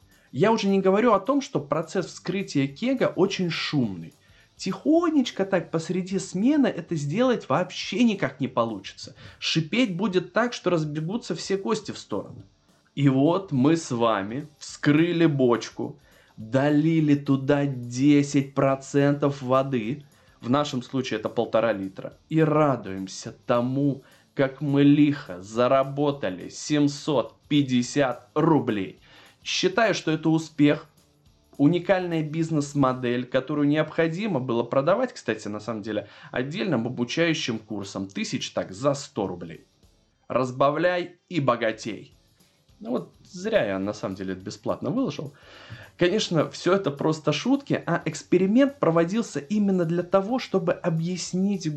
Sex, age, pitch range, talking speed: male, 20-39, 130-180 Hz, 120 wpm